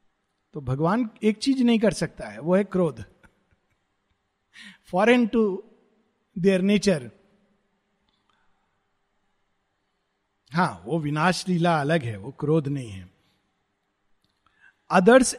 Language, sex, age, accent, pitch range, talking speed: Hindi, male, 50-69, native, 145-215 Hz, 100 wpm